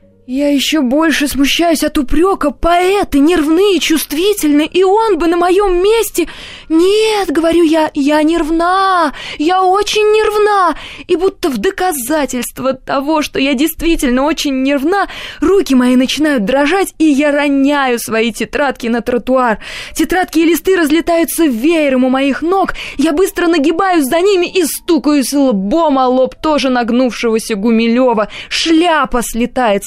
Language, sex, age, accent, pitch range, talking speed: Russian, female, 20-39, native, 245-330 Hz, 140 wpm